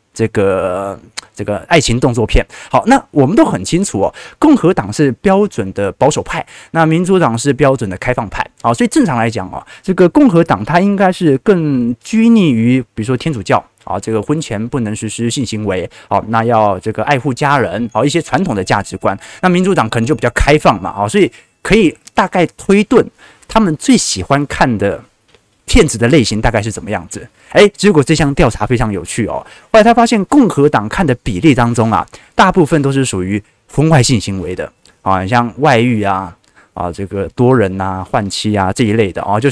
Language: Chinese